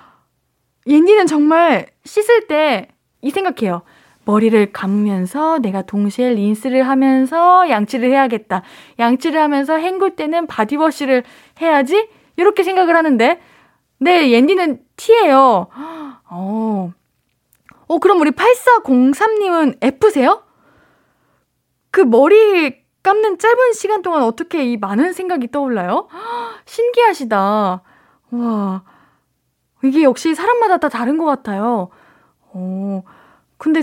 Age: 20-39